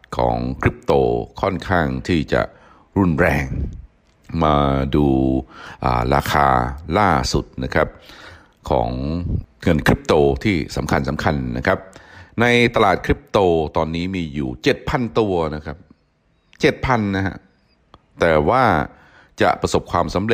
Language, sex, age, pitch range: Thai, male, 60-79, 70-85 Hz